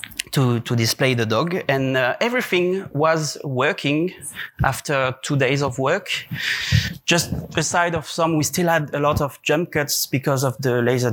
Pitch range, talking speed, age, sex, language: 130-160 Hz, 165 wpm, 30-49, male, Turkish